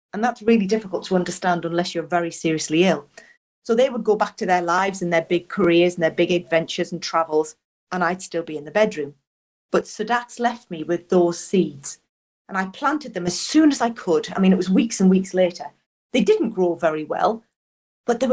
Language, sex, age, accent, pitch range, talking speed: English, female, 40-59, British, 180-235 Hz, 220 wpm